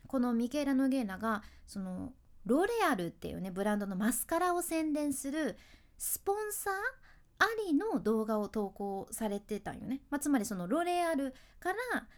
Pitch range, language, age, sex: 215-320 Hz, Japanese, 20-39, female